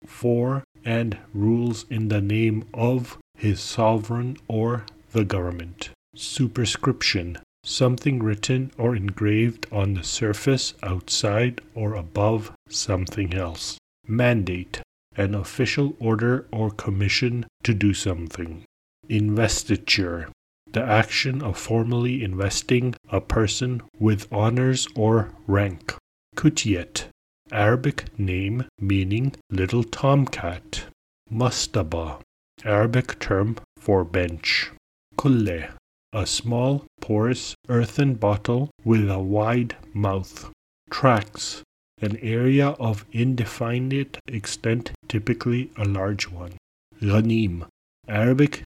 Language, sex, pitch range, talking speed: English, male, 100-120 Hz, 95 wpm